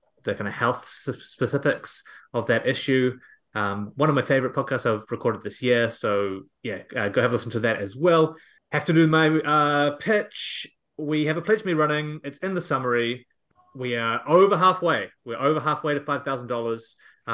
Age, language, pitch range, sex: 20-39, English, 115-150 Hz, male